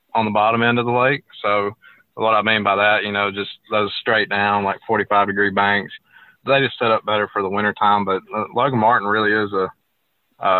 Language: English